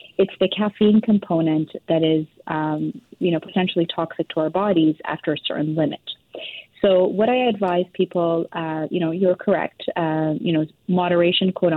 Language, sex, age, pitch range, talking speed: English, female, 30-49, 160-190 Hz, 170 wpm